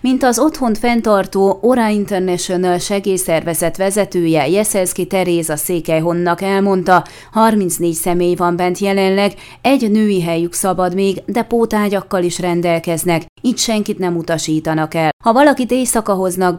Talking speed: 125 wpm